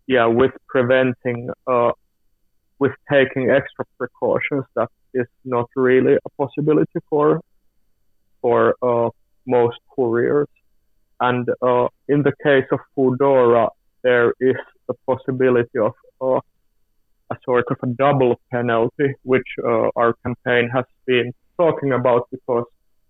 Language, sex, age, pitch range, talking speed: Finnish, male, 30-49, 115-130 Hz, 120 wpm